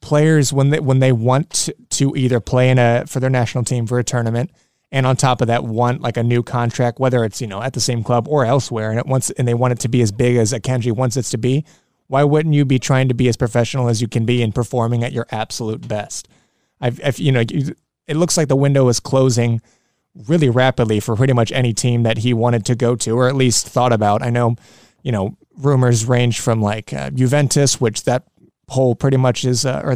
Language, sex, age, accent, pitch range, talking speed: English, male, 20-39, American, 120-130 Hz, 240 wpm